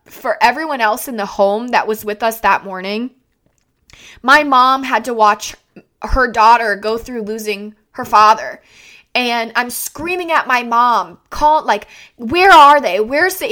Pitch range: 215-275 Hz